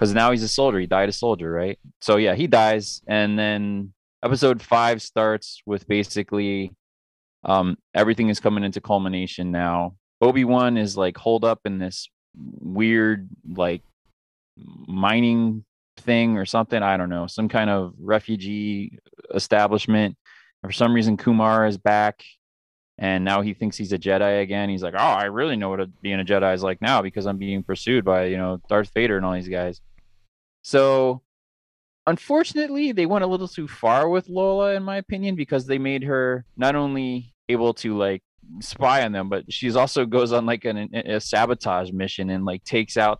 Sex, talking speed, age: male, 180 wpm, 20-39